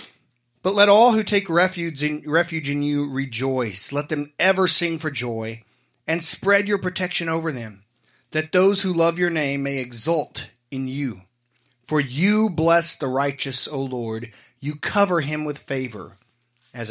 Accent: American